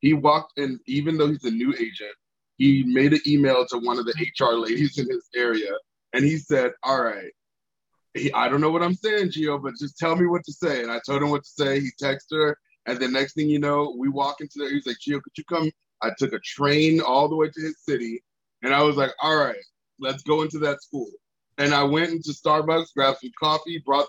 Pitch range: 135-165 Hz